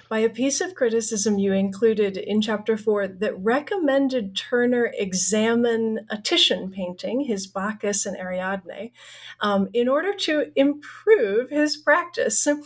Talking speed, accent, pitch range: 135 wpm, American, 210-280 Hz